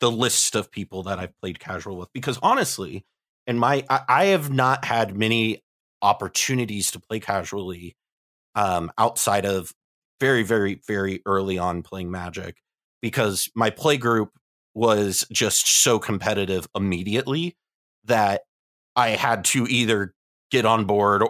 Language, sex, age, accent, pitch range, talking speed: English, male, 30-49, American, 95-125 Hz, 145 wpm